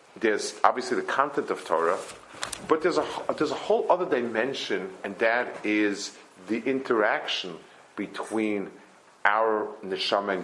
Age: 50-69